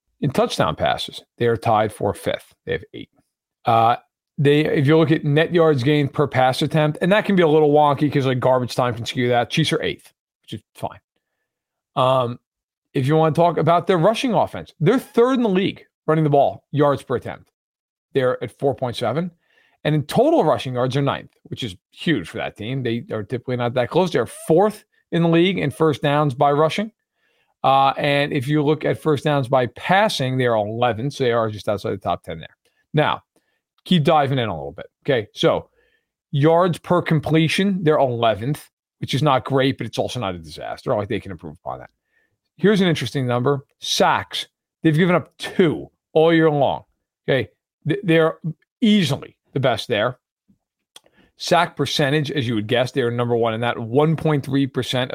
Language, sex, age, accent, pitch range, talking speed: English, male, 40-59, American, 125-160 Hz, 195 wpm